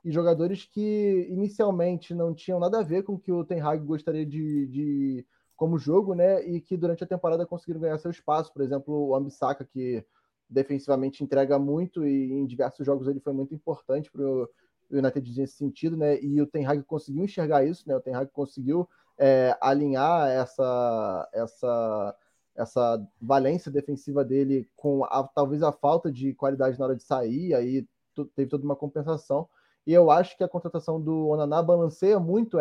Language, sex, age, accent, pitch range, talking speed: Portuguese, male, 10-29, Brazilian, 135-165 Hz, 185 wpm